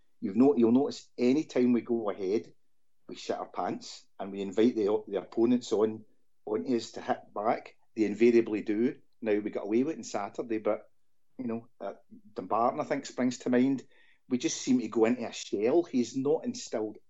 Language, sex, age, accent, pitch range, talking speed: English, male, 40-59, British, 110-130 Hz, 195 wpm